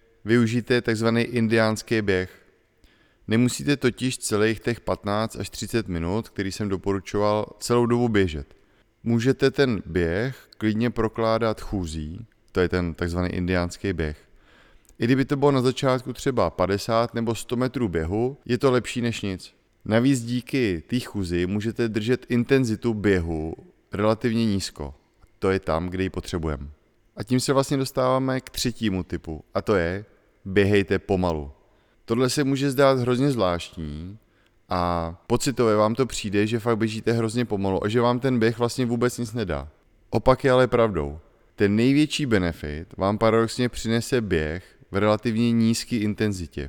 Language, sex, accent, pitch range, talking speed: Czech, male, native, 95-120 Hz, 150 wpm